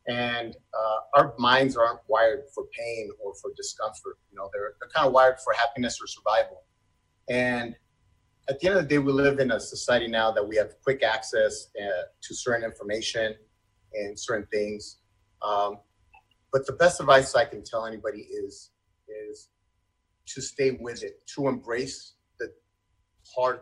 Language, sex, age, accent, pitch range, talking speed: English, male, 30-49, American, 105-145 Hz, 170 wpm